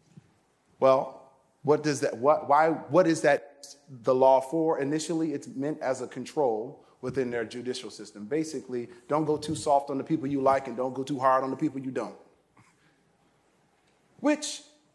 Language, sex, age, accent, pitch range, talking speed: English, male, 30-49, American, 145-205 Hz, 175 wpm